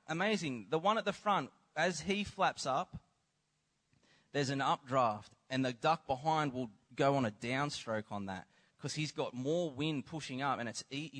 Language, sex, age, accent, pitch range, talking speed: English, male, 20-39, Australian, 125-160 Hz, 180 wpm